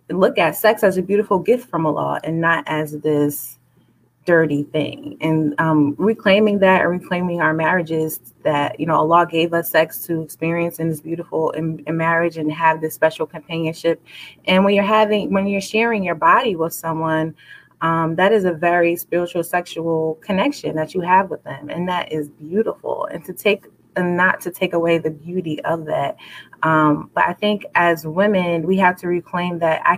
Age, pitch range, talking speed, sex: 20-39, 155-175 Hz, 190 wpm, female